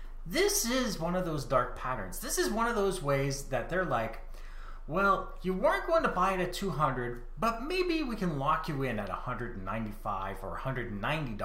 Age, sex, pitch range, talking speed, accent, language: 30-49, male, 125-210 Hz, 180 wpm, American, English